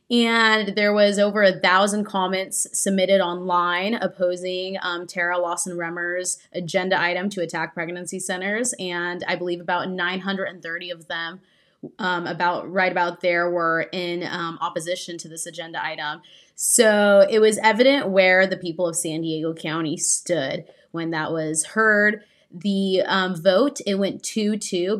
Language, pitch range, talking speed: English, 175-200 Hz, 145 wpm